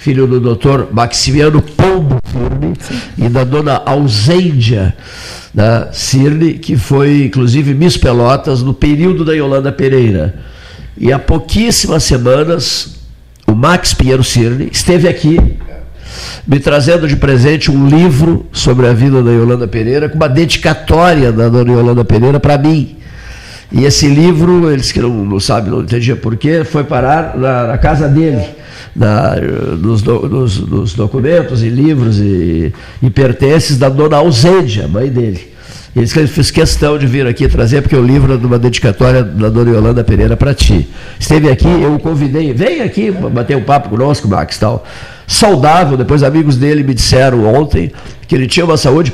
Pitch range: 120-150 Hz